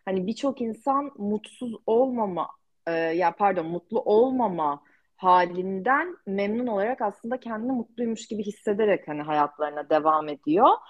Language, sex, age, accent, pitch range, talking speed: Turkish, female, 30-49, native, 175-225 Hz, 120 wpm